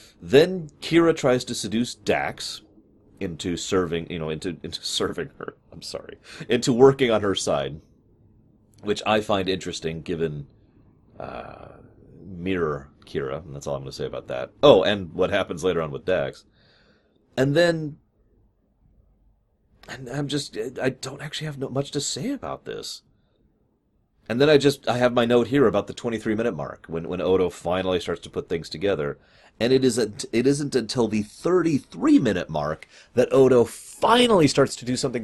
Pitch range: 100-145 Hz